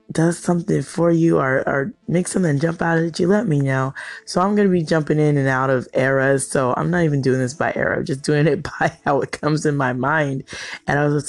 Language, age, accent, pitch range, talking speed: English, 20-39, American, 130-165 Hz, 265 wpm